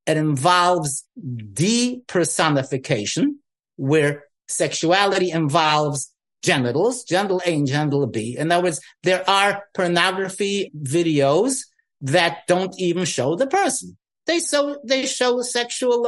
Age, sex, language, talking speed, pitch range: 50-69, male, English, 110 wpm, 150-205 Hz